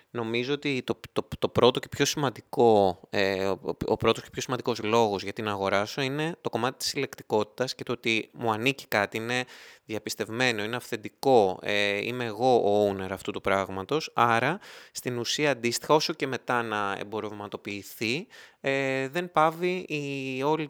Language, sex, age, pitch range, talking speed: Greek, male, 20-39, 105-140 Hz, 140 wpm